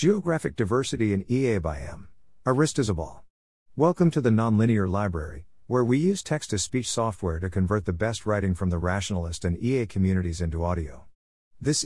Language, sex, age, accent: English, male, 50-69, American